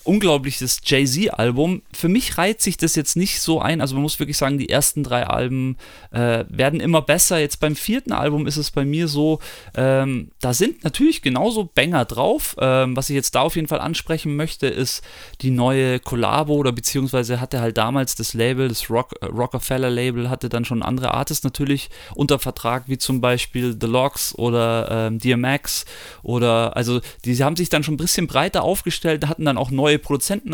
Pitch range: 130-160 Hz